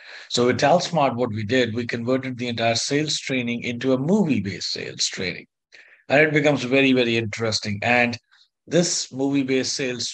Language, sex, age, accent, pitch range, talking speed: English, male, 50-69, Indian, 115-130 Hz, 160 wpm